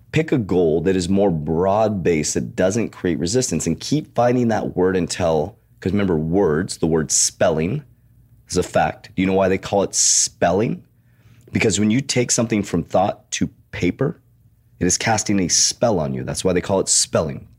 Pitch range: 85-115 Hz